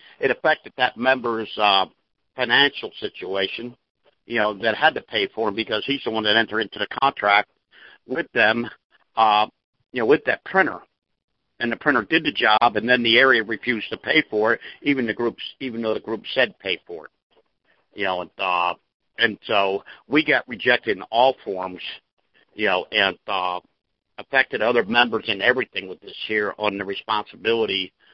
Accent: American